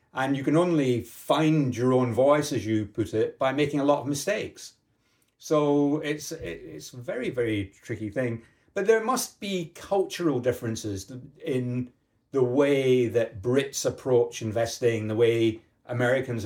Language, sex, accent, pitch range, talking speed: English, male, British, 115-145 Hz, 155 wpm